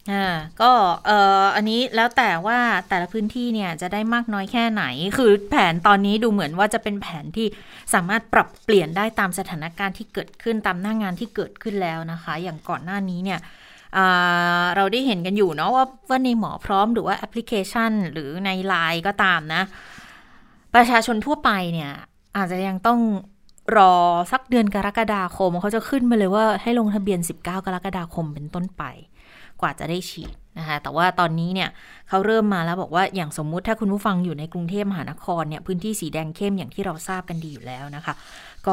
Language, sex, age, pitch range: Thai, female, 20-39, 175-215 Hz